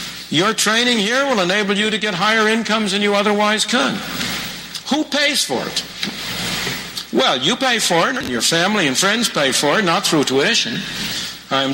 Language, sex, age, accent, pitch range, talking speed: English, male, 60-79, American, 170-215 Hz, 180 wpm